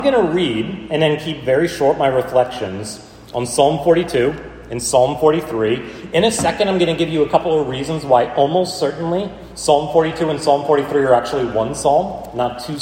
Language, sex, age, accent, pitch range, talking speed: English, male, 30-49, American, 125-165 Hz, 195 wpm